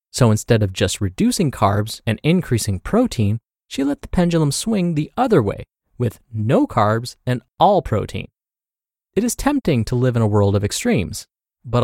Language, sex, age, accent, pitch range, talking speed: English, male, 30-49, American, 110-165 Hz, 170 wpm